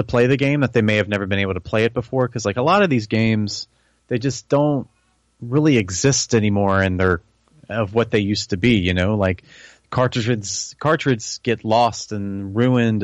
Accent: American